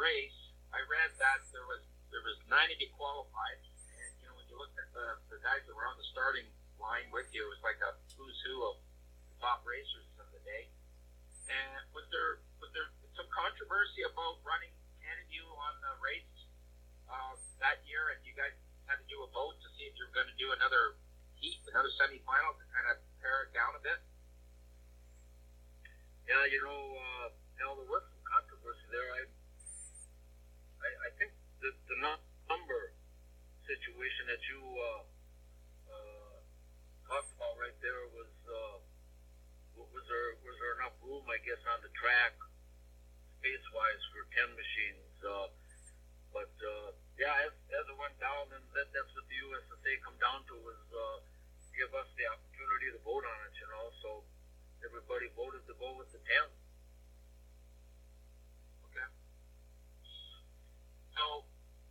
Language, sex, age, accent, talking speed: English, male, 50-69, American, 160 wpm